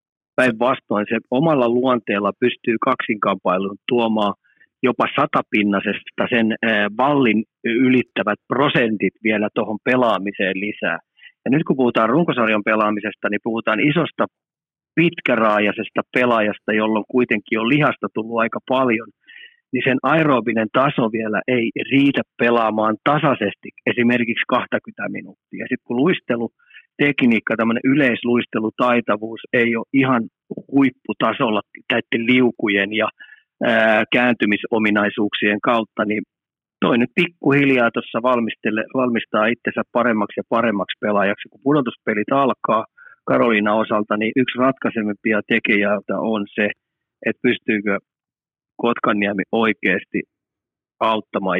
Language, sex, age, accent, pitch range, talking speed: Finnish, male, 30-49, native, 105-125 Hz, 100 wpm